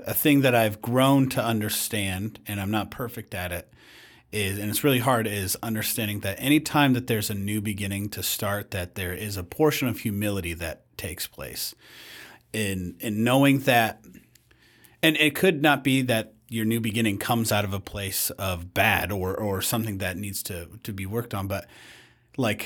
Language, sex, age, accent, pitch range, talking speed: English, male, 30-49, American, 100-125 Hz, 190 wpm